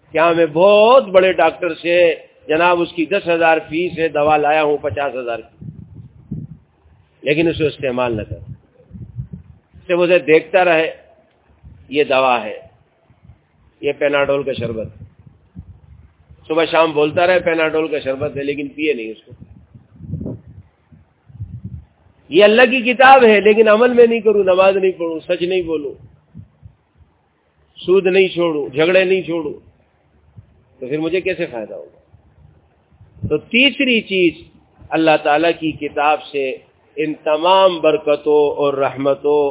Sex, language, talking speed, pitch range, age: male, Urdu, 130 wpm, 130-180 Hz, 50-69